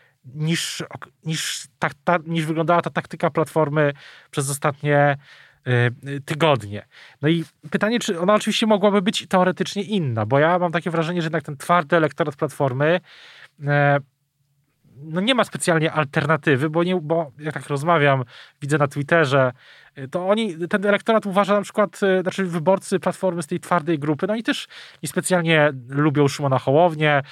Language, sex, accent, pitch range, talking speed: Polish, male, native, 135-170 Hz, 145 wpm